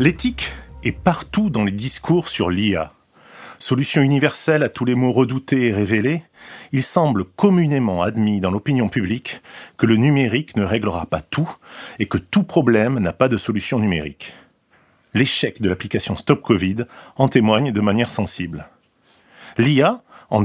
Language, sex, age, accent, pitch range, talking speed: French, male, 40-59, French, 100-135 Hz, 150 wpm